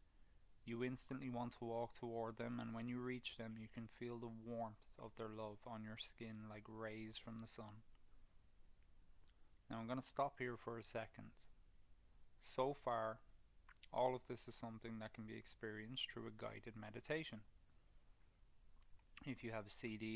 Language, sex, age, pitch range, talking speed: English, male, 20-39, 105-115 Hz, 170 wpm